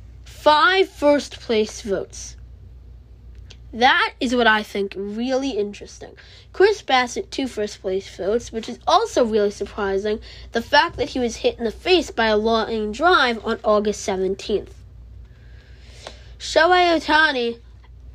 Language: English